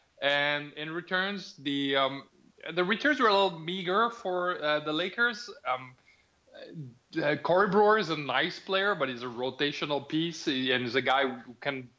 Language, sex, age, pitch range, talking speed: English, male, 20-39, 130-175 Hz, 170 wpm